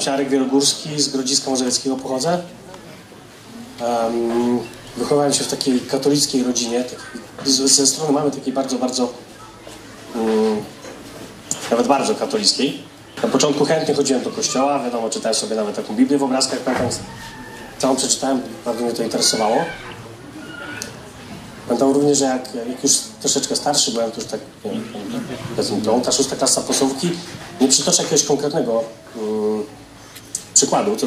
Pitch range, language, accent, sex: 120-140 Hz, Polish, native, male